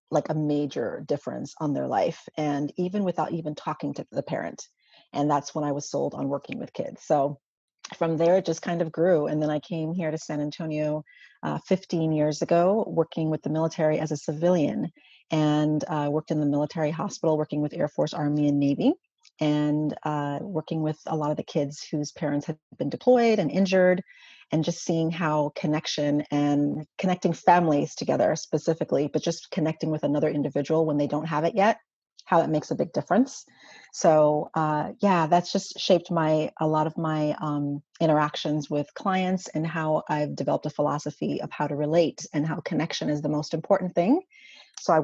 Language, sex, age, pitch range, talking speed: English, female, 30-49, 150-170 Hz, 195 wpm